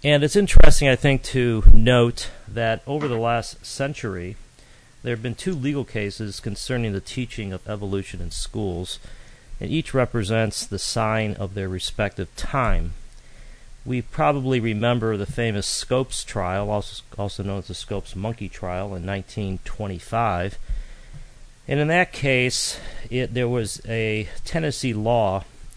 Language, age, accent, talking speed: English, 40-59, American, 140 wpm